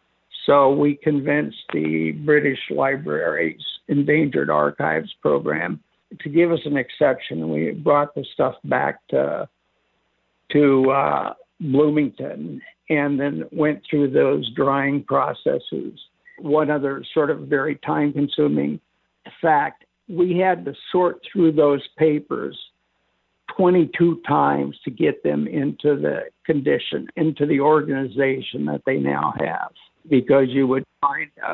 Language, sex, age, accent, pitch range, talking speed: English, male, 60-79, American, 130-155 Hz, 120 wpm